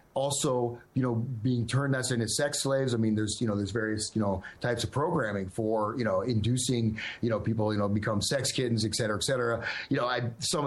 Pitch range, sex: 110-130 Hz, male